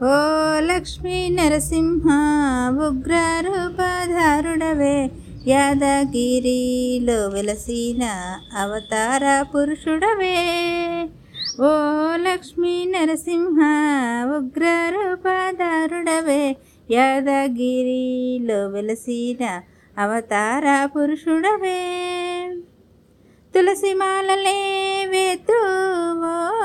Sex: female